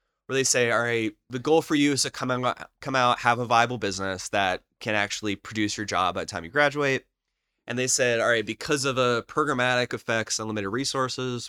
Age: 20-39